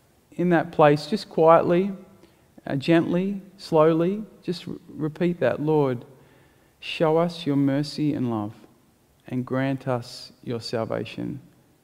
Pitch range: 120-145 Hz